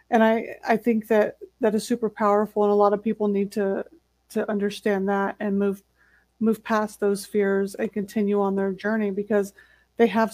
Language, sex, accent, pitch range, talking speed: English, female, American, 200-225 Hz, 190 wpm